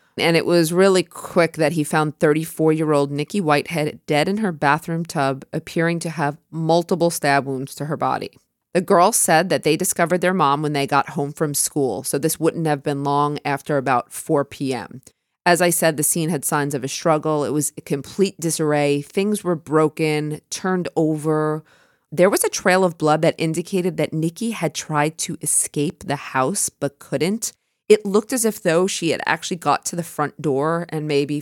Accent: American